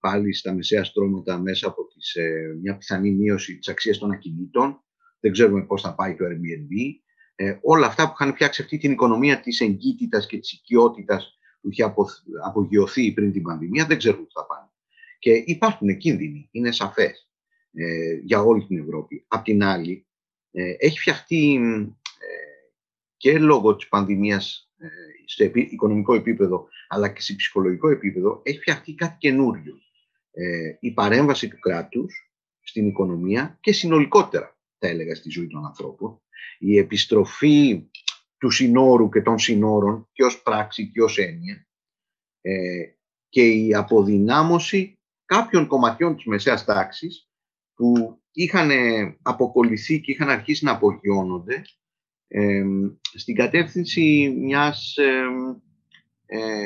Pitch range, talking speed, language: 100-155 Hz, 140 wpm, Greek